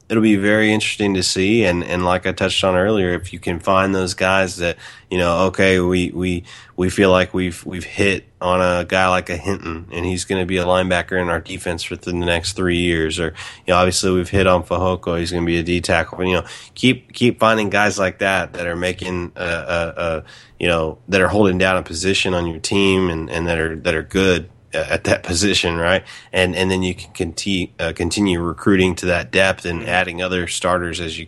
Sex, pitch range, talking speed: male, 90-100 Hz, 230 wpm